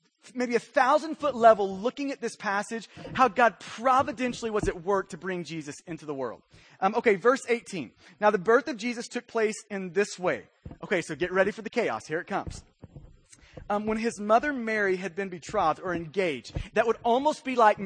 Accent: American